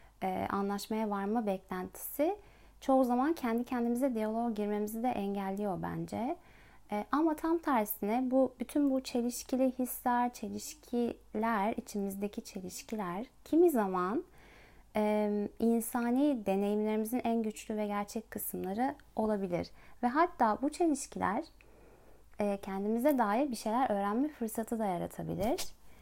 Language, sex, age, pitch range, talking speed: Turkish, female, 30-49, 205-255 Hz, 105 wpm